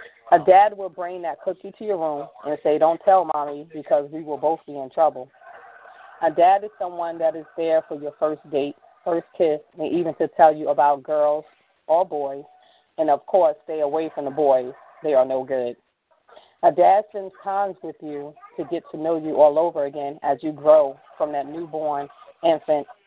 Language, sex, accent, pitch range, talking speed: English, female, American, 150-185 Hz, 200 wpm